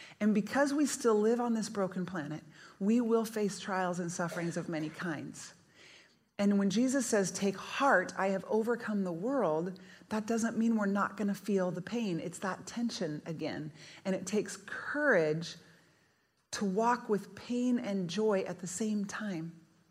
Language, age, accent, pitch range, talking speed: English, 30-49, American, 185-225 Hz, 170 wpm